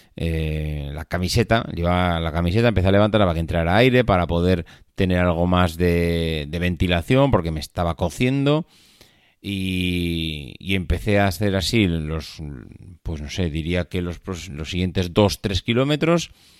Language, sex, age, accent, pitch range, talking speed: Spanish, male, 30-49, Spanish, 90-110 Hz, 155 wpm